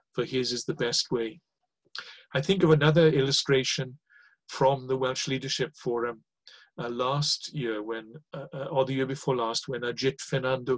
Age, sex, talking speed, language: 40-59, male, 160 wpm, English